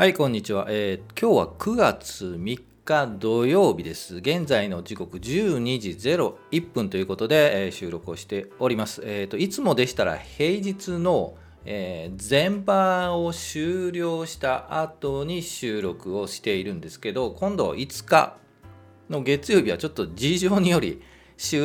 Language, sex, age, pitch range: Japanese, male, 40-59, 100-165 Hz